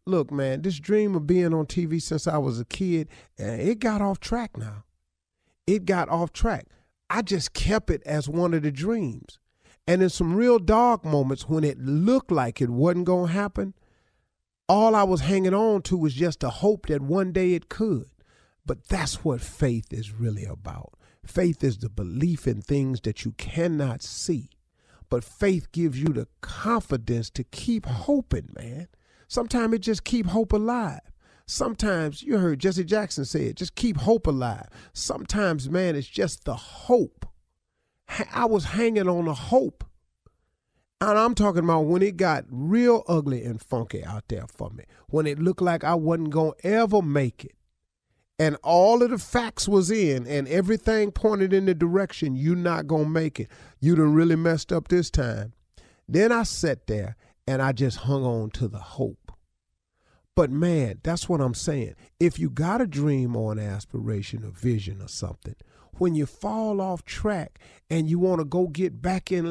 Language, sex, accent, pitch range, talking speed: English, male, American, 130-195 Hz, 185 wpm